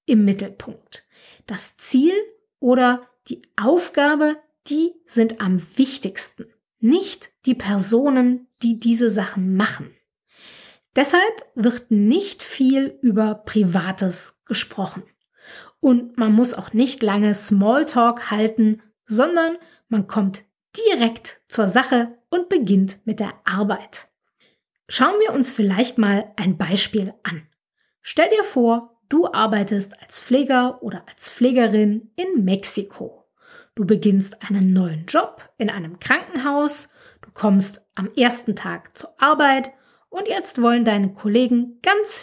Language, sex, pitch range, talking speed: German, female, 205-270 Hz, 120 wpm